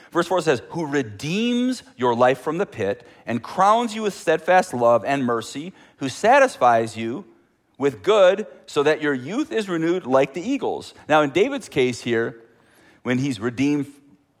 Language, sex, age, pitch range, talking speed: English, male, 40-59, 105-135 Hz, 165 wpm